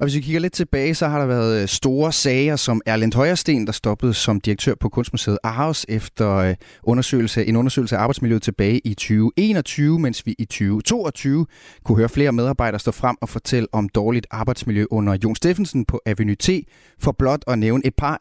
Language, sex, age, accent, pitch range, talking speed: Danish, male, 30-49, native, 110-135 Hz, 190 wpm